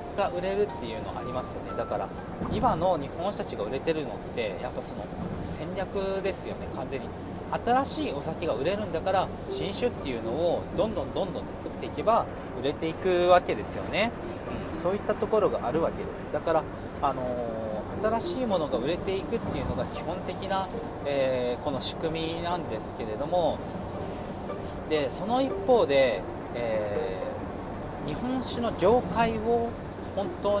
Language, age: Japanese, 40-59